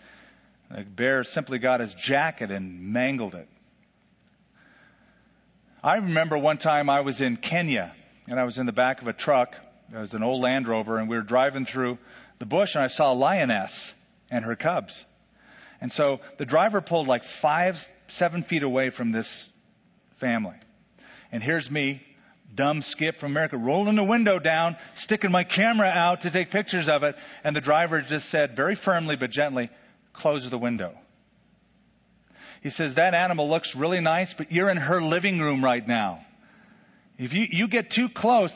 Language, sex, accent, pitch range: English, male, American, 130-175 Hz